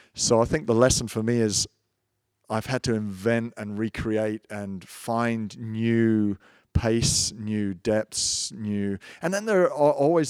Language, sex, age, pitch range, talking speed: English, male, 40-59, 100-115 Hz, 150 wpm